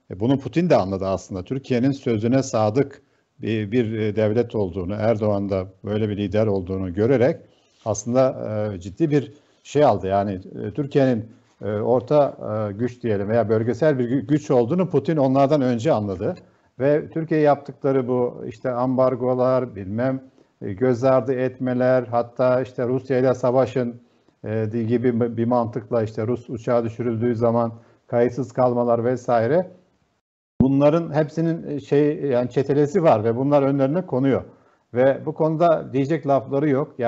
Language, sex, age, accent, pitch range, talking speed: Turkish, male, 50-69, native, 110-135 Hz, 130 wpm